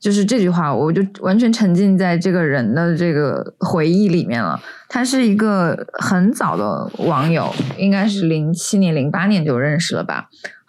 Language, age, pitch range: Chinese, 20-39, 165-195 Hz